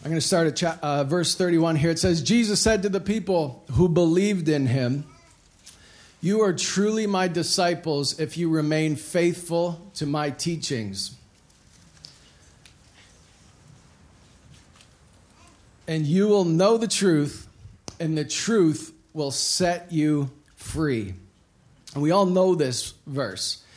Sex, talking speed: male, 130 wpm